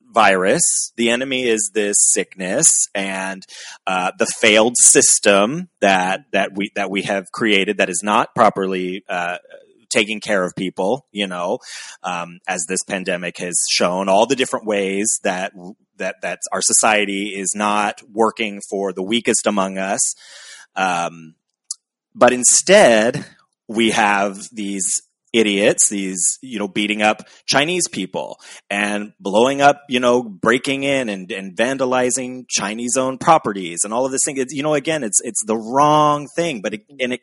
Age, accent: 30-49, American